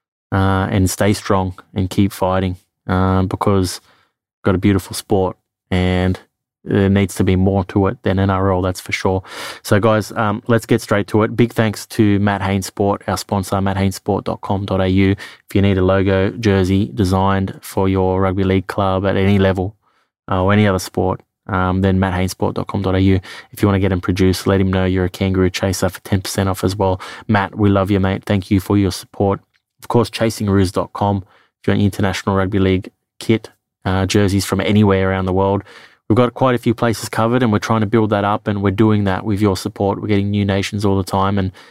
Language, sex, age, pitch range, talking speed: English, male, 20-39, 95-105 Hz, 200 wpm